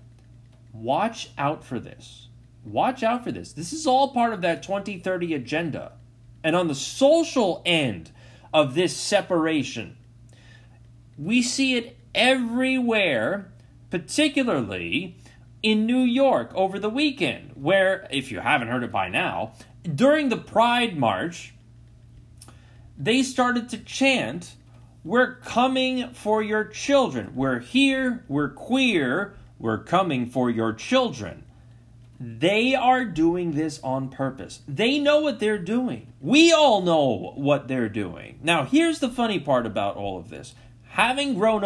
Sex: male